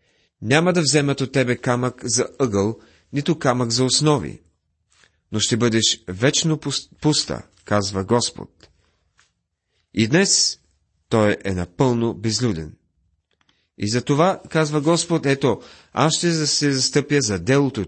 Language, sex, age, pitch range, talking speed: Bulgarian, male, 40-59, 100-145 Hz, 120 wpm